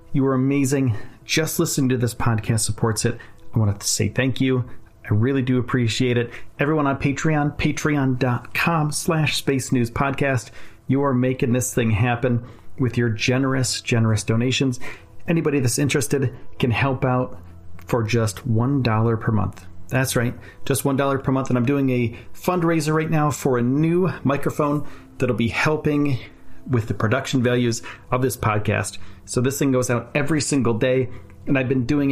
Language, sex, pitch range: English, male, 115-145 Hz